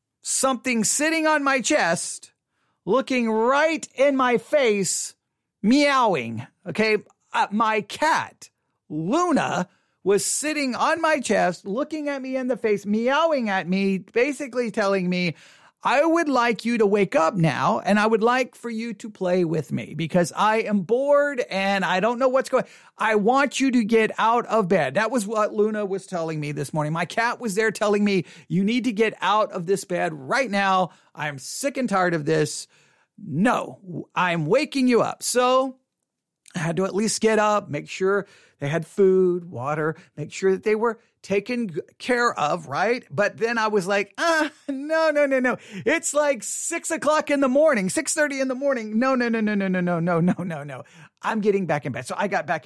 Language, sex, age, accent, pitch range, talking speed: English, male, 40-59, American, 185-255 Hz, 195 wpm